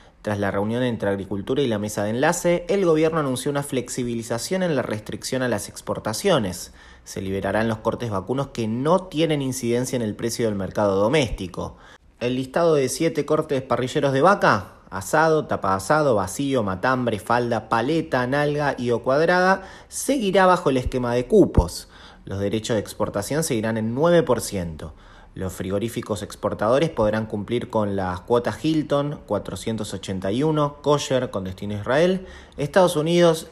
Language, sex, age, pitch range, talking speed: Spanish, male, 30-49, 105-160 Hz, 150 wpm